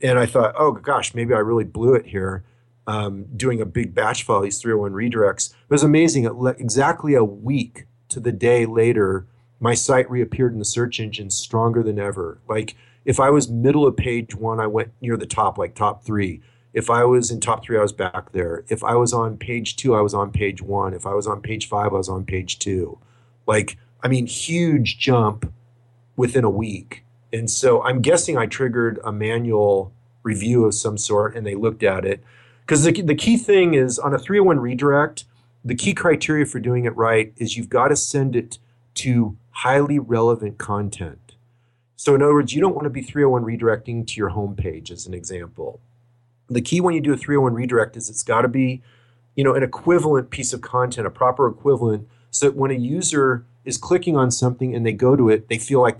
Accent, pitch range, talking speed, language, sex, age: American, 110-130 Hz, 210 wpm, English, male, 40-59